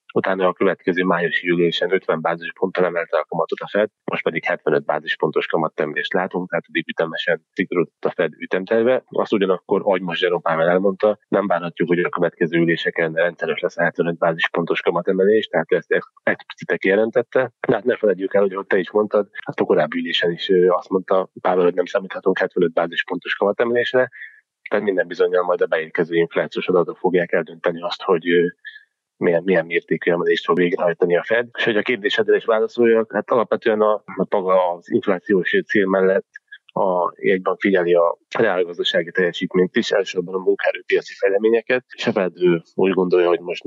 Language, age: Hungarian, 30-49